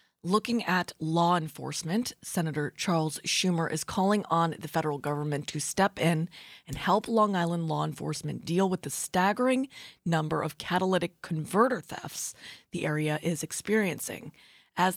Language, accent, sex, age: English, American, female, 20-39